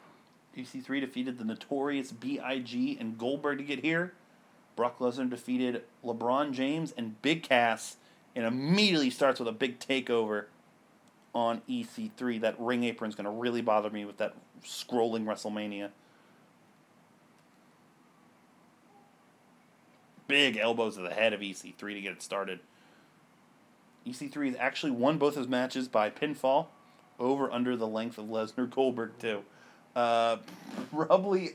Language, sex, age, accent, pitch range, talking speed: English, male, 30-49, American, 105-140 Hz, 125 wpm